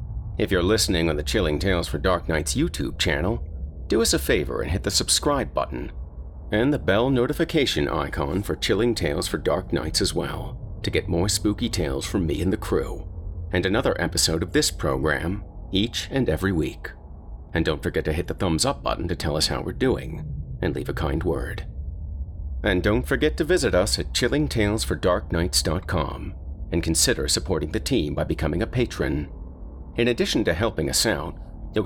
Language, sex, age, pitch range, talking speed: English, male, 40-59, 75-95 Hz, 185 wpm